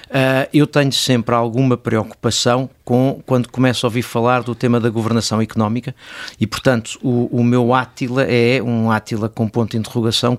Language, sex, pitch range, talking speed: Portuguese, male, 120-135 Hz, 175 wpm